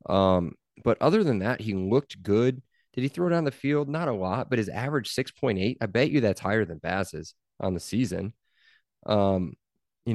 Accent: American